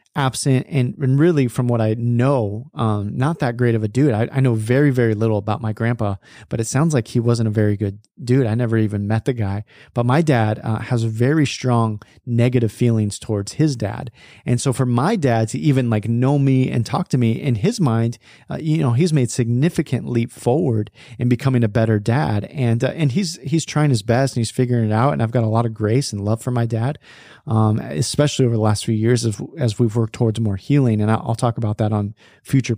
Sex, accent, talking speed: male, American, 235 wpm